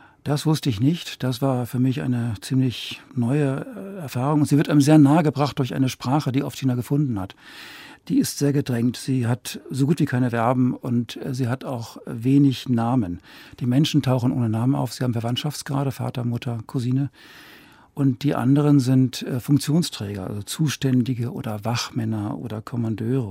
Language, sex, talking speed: German, male, 175 wpm